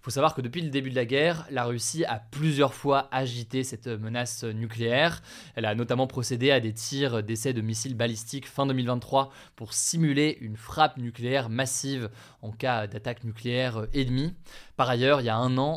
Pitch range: 120-150 Hz